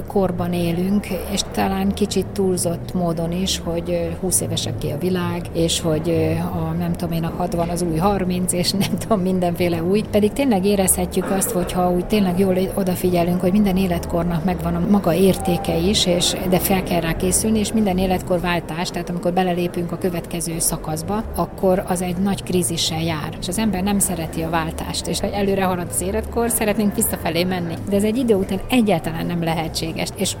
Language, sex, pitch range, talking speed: Hungarian, female, 170-195 Hz, 180 wpm